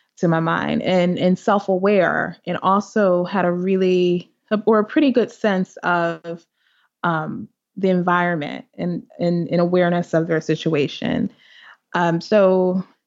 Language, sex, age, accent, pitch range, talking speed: English, female, 20-39, American, 175-205 Hz, 130 wpm